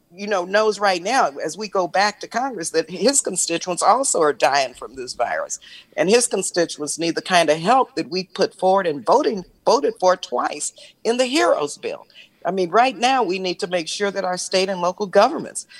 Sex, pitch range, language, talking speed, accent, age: female, 180-215 Hz, English, 215 wpm, American, 50-69